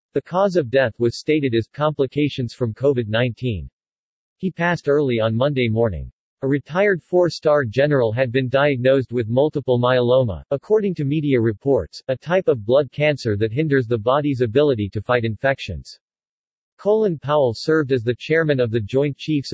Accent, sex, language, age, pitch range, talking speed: American, male, English, 50-69, 120-150 Hz, 165 wpm